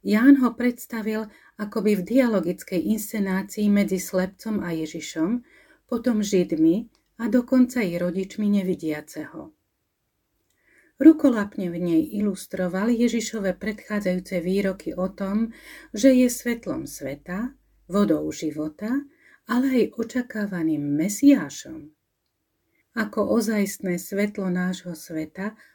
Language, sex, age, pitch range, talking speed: Slovak, female, 40-59, 180-245 Hz, 100 wpm